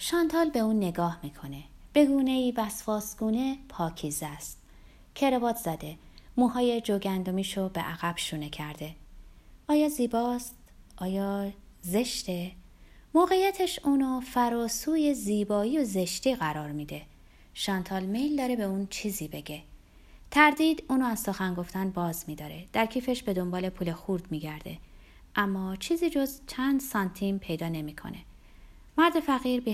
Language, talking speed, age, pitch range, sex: Persian, 125 wpm, 30-49, 175-260 Hz, female